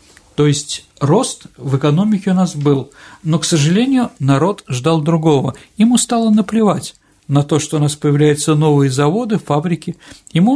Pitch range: 140-205 Hz